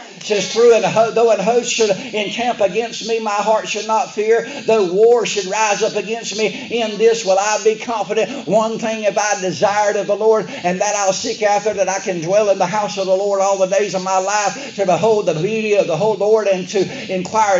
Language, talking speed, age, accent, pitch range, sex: English, 230 wpm, 50-69, American, 200-220 Hz, male